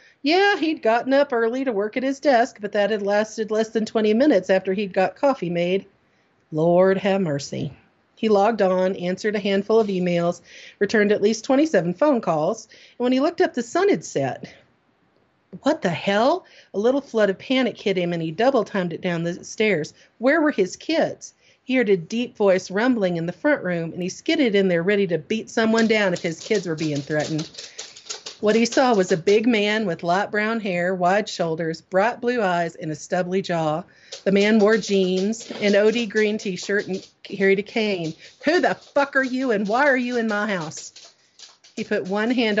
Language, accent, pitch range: English, American, 185-245 Hz